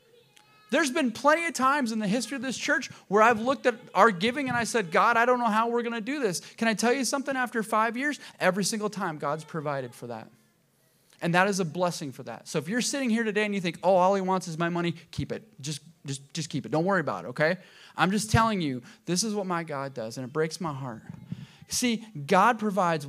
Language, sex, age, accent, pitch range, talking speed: English, male, 30-49, American, 155-225 Hz, 255 wpm